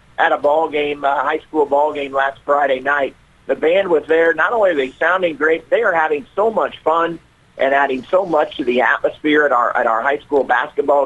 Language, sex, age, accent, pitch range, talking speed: English, male, 40-59, American, 140-180 Hz, 215 wpm